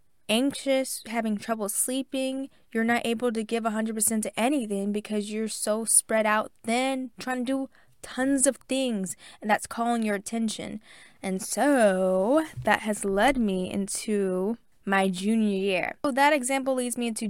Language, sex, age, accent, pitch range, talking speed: English, female, 10-29, American, 190-250 Hz, 155 wpm